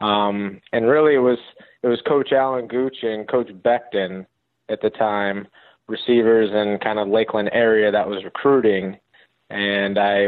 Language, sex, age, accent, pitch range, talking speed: English, male, 20-39, American, 105-115 Hz, 160 wpm